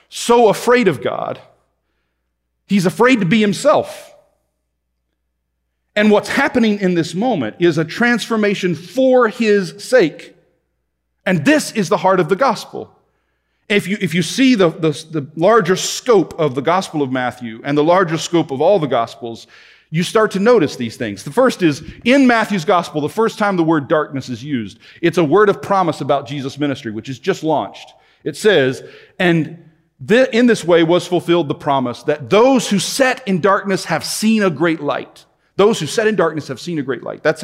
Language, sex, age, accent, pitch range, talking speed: English, male, 40-59, American, 150-215 Hz, 185 wpm